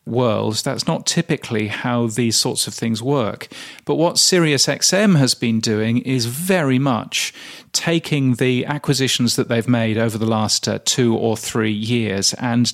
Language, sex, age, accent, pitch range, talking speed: English, male, 40-59, British, 115-135 Hz, 155 wpm